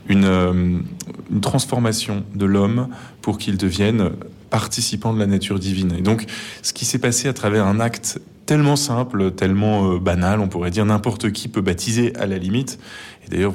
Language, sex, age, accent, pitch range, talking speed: French, male, 20-39, French, 95-110 Hz, 180 wpm